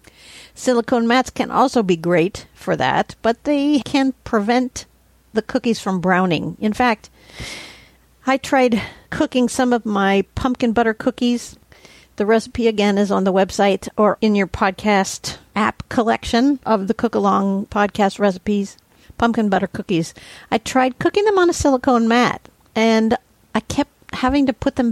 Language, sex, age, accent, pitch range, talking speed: English, female, 50-69, American, 205-250 Hz, 155 wpm